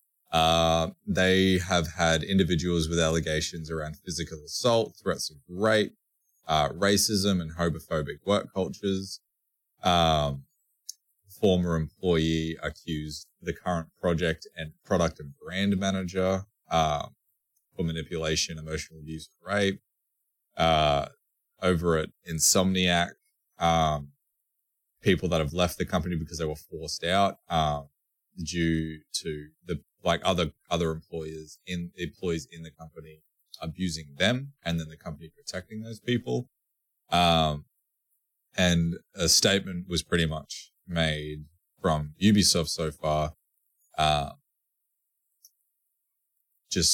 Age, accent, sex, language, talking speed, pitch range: 20-39, Australian, male, English, 115 wpm, 80-90 Hz